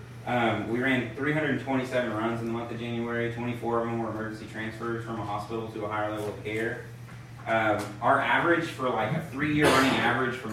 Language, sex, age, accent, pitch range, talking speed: English, male, 30-49, American, 105-120 Hz, 200 wpm